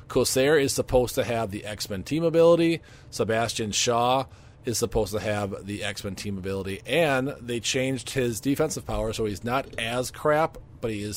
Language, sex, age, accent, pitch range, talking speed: English, male, 40-59, American, 100-130 Hz, 175 wpm